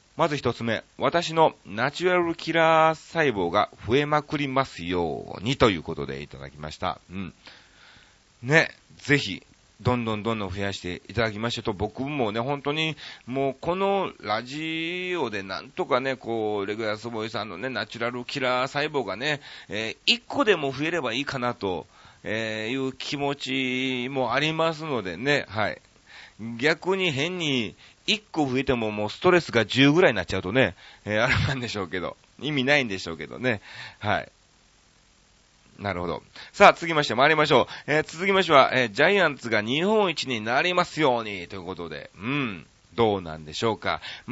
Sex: male